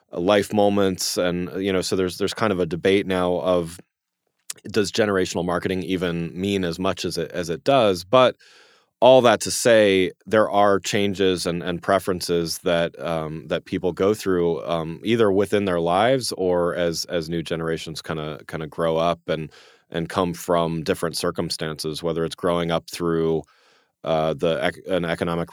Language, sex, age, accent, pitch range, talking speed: English, male, 30-49, American, 80-95 Hz, 175 wpm